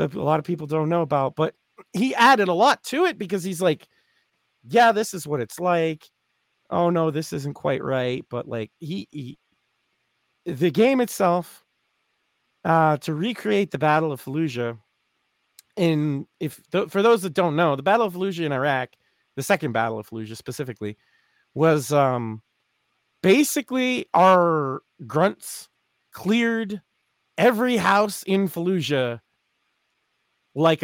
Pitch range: 130-180 Hz